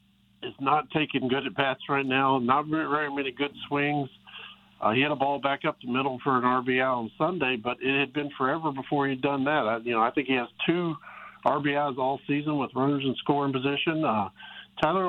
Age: 50-69